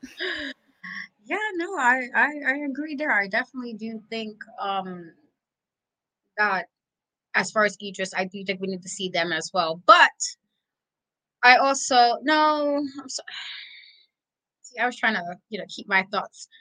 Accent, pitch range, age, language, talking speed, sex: American, 205-285 Hz, 20-39, English, 155 wpm, female